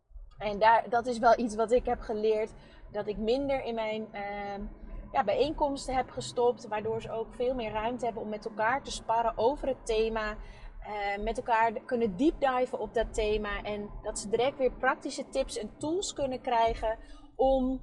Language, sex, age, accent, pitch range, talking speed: Dutch, female, 30-49, Dutch, 215-265 Hz, 185 wpm